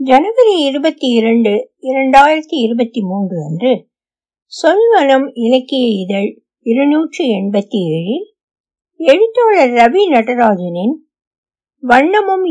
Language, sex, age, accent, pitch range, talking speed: Tamil, female, 60-79, native, 205-280 Hz, 75 wpm